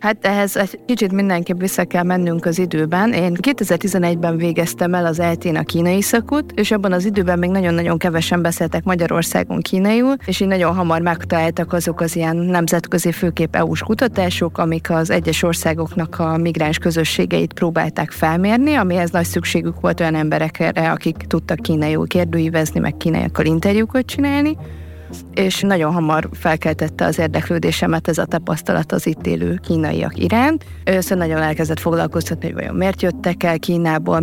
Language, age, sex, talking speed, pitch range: Hungarian, 30-49, female, 155 wpm, 160-185 Hz